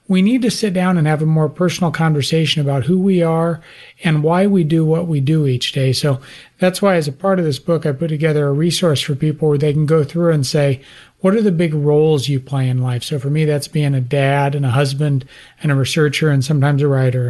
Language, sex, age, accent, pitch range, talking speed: English, male, 40-59, American, 140-175 Hz, 255 wpm